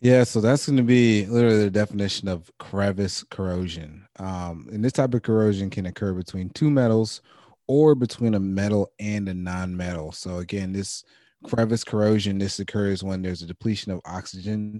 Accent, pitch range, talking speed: American, 90-105 Hz, 175 wpm